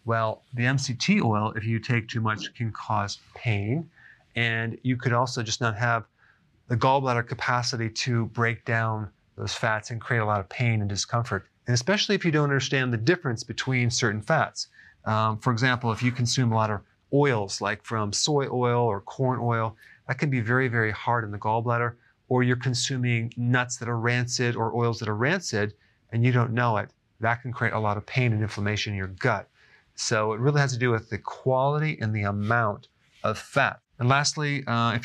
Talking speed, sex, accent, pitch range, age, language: 205 wpm, male, American, 110-130 Hz, 40-59, English